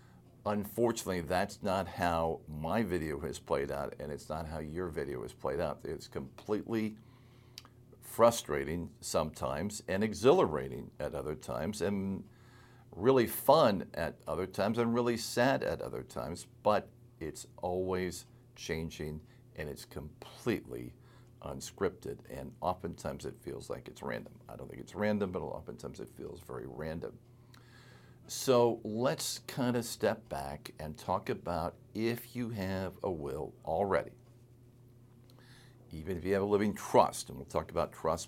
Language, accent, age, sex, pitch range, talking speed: English, American, 50-69, male, 85-120 Hz, 145 wpm